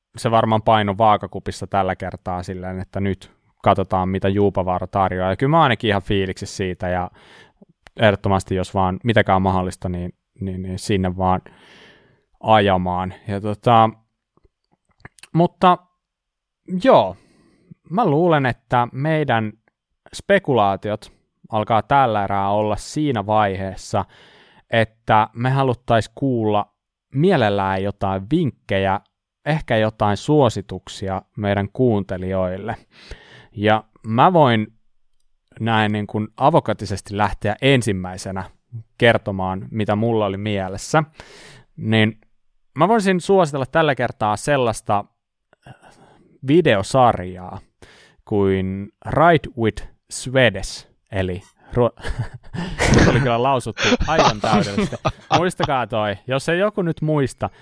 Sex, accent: male, native